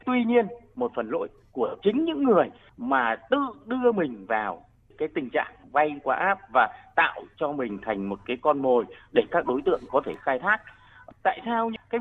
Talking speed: 200 wpm